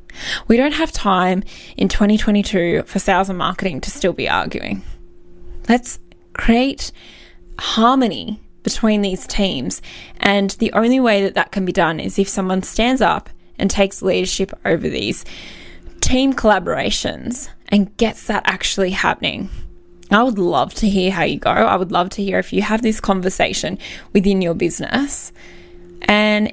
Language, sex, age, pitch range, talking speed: English, female, 10-29, 175-225 Hz, 155 wpm